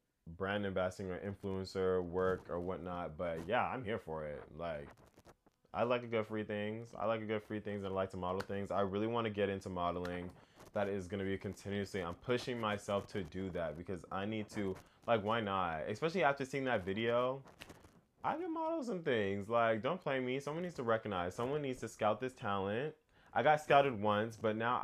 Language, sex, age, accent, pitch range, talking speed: English, male, 20-39, American, 95-125 Hz, 210 wpm